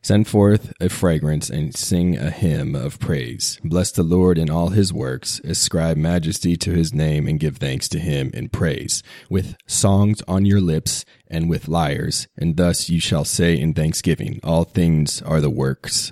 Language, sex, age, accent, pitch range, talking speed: English, male, 30-49, American, 80-95 Hz, 180 wpm